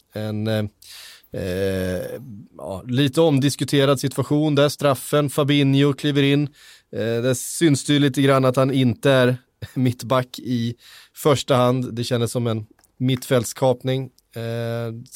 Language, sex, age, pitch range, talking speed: Swedish, male, 20-39, 110-135 Hz, 125 wpm